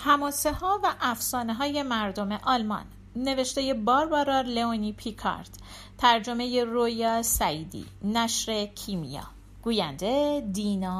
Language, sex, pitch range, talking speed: Persian, female, 200-310 Hz, 100 wpm